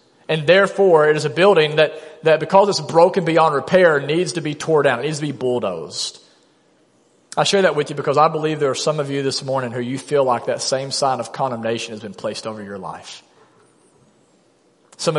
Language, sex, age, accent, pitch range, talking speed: English, male, 40-59, American, 125-160 Hz, 215 wpm